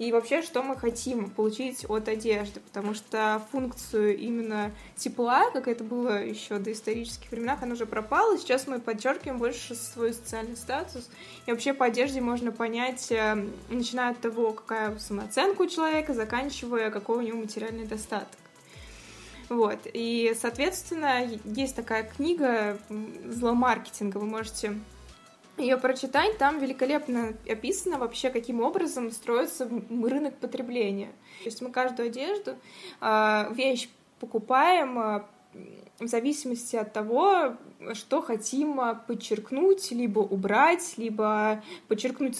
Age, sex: 20-39, female